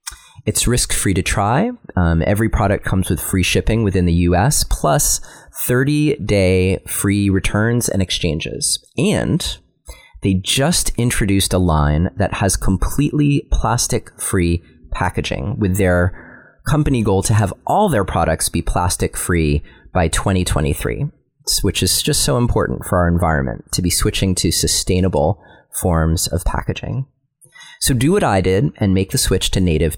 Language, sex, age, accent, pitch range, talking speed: English, male, 30-49, American, 85-110 Hz, 140 wpm